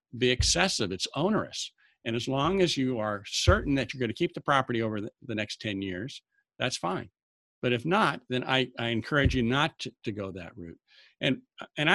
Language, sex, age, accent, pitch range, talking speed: English, male, 60-79, American, 105-135 Hz, 210 wpm